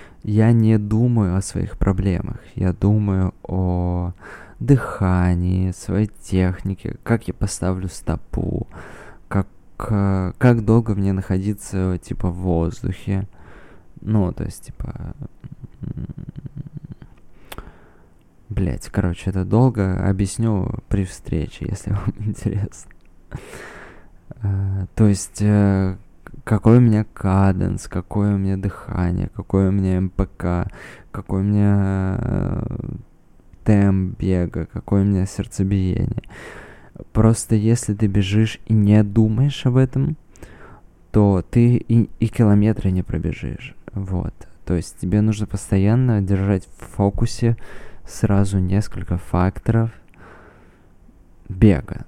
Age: 20-39